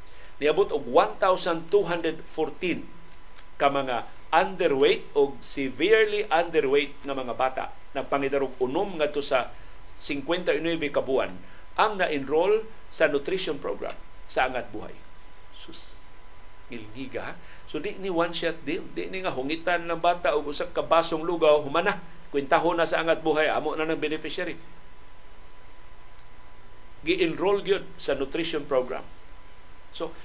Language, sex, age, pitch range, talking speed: Filipino, male, 50-69, 140-180 Hz, 115 wpm